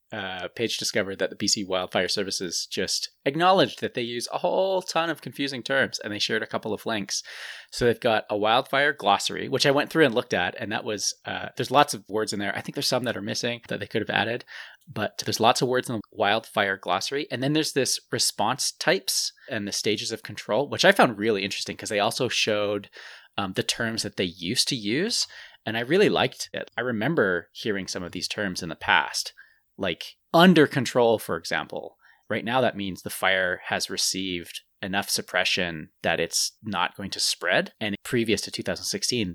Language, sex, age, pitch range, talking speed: English, male, 20-39, 105-155 Hz, 210 wpm